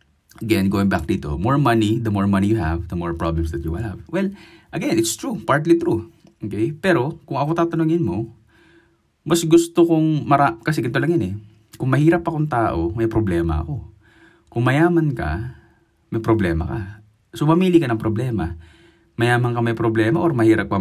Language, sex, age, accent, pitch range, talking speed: Filipino, male, 20-39, native, 85-115 Hz, 185 wpm